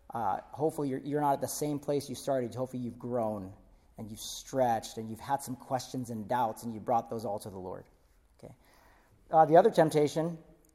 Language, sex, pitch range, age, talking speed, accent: English, male, 125-155 Hz, 40-59, 205 wpm, American